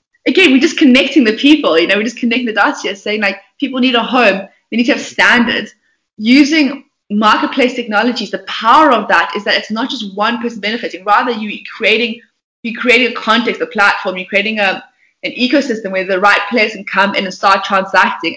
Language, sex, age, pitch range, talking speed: English, female, 20-39, 200-265 Hz, 205 wpm